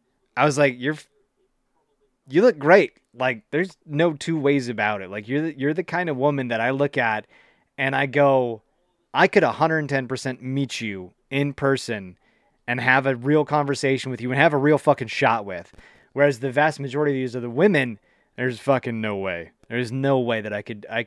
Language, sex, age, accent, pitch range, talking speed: English, male, 20-39, American, 115-145 Hz, 210 wpm